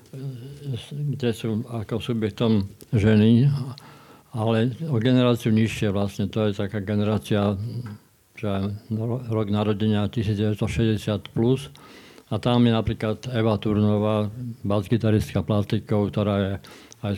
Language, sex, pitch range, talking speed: Slovak, male, 100-115 Hz, 105 wpm